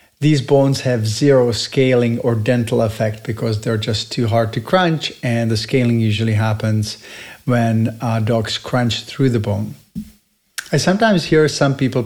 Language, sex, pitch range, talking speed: English, male, 115-140 Hz, 160 wpm